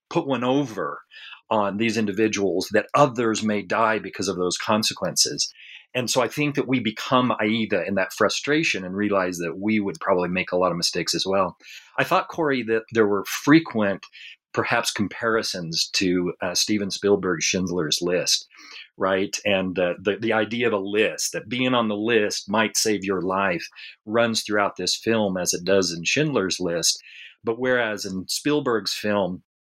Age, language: 40-59, English